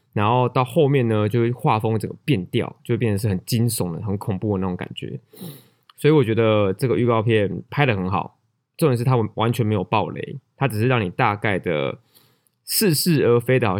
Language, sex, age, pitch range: Chinese, male, 20-39, 105-130 Hz